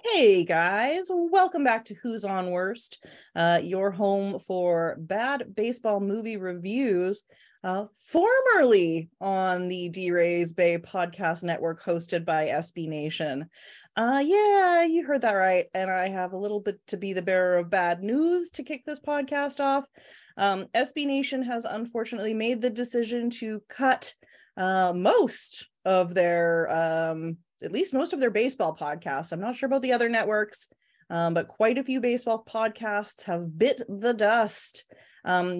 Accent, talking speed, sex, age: American, 155 wpm, female, 30-49